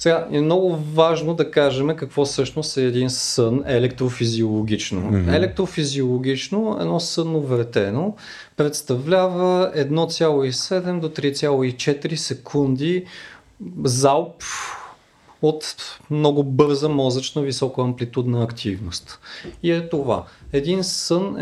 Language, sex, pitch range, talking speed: Bulgarian, male, 125-150 Hz, 95 wpm